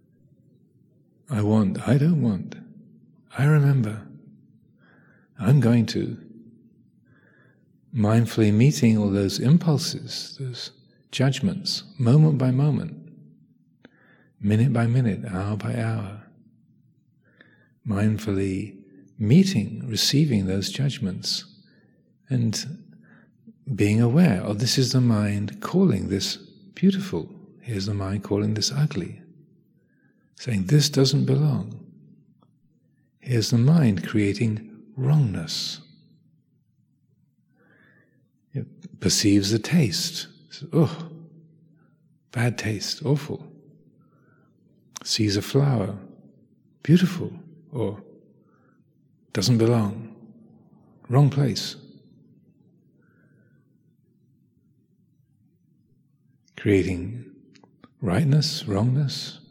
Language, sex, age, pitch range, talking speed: English, male, 50-69, 105-150 Hz, 80 wpm